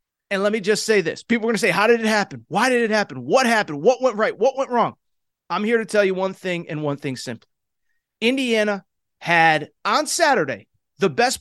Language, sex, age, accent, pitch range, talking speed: English, male, 30-49, American, 185-240 Hz, 230 wpm